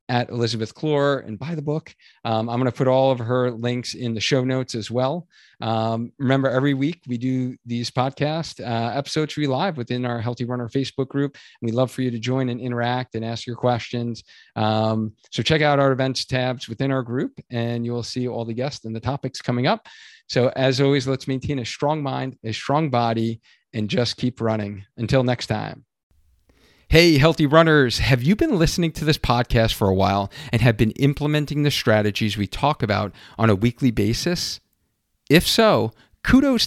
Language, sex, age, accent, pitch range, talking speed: English, male, 40-59, American, 115-140 Hz, 200 wpm